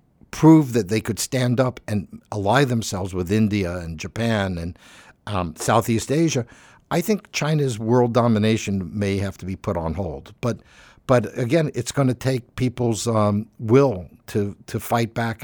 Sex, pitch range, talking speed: male, 100-130 Hz, 165 wpm